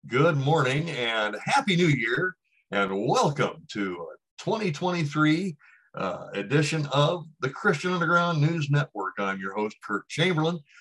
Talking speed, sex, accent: 130 wpm, male, American